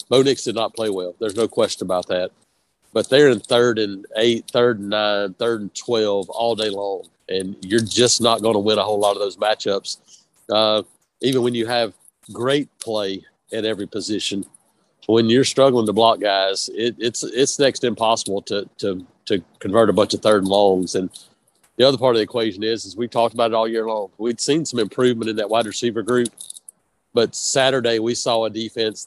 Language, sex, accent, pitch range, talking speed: English, male, American, 105-120 Hz, 210 wpm